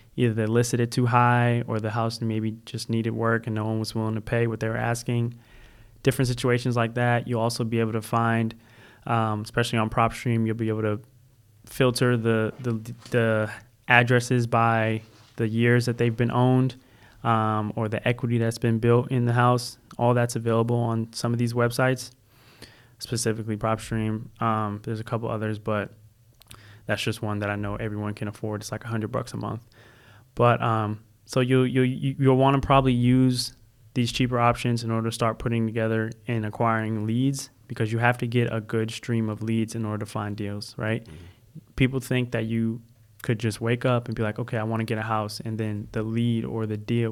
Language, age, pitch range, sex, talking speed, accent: English, 20-39, 110-120 Hz, male, 200 wpm, American